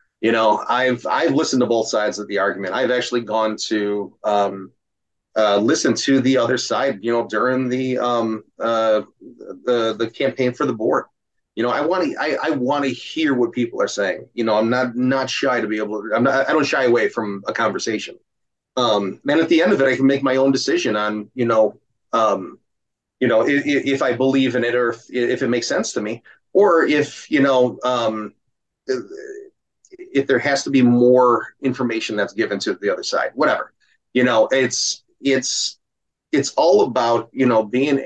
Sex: male